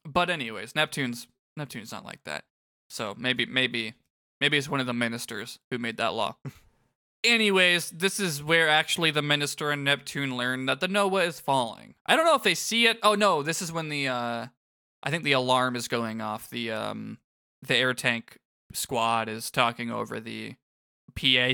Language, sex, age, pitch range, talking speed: English, male, 20-39, 120-165 Hz, 185 wpm